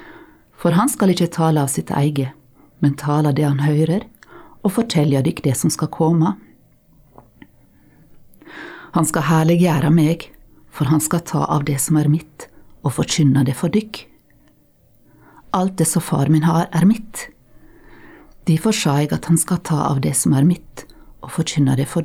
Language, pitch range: English, 150-190 Hz